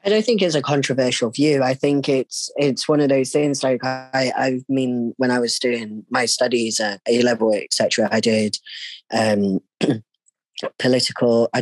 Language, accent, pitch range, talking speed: English, British, 105-130 Hz, 175 wpm